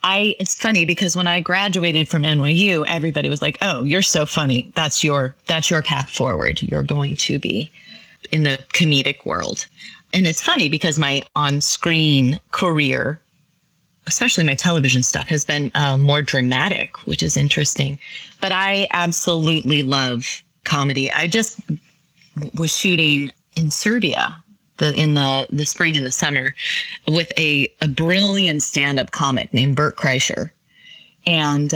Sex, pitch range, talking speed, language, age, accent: female, 140-170 Hz, 150 wpm, English, 30-49, American